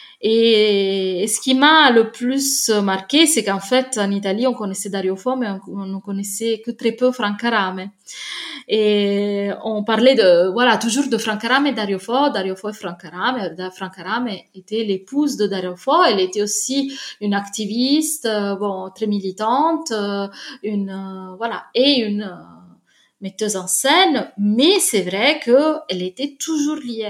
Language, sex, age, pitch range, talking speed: French, female, 20-39, 190-250 Hz, 155 wpm